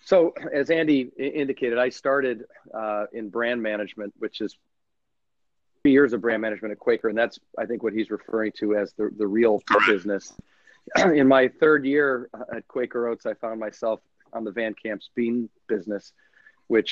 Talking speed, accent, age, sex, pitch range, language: 170 wpm, American, 40-59, male, 105-120 Hz, English